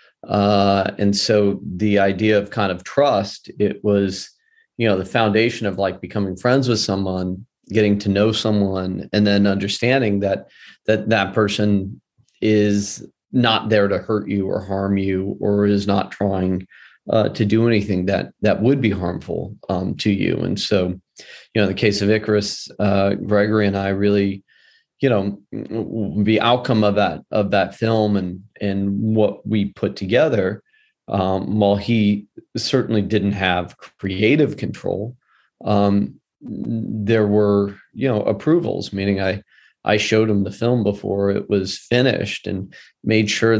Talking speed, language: 155 wpm, English